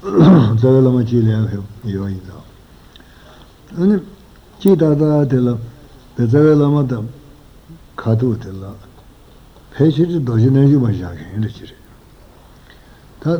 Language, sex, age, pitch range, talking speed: Italian, male, 60-79, 115-140 Hz, 80 wpm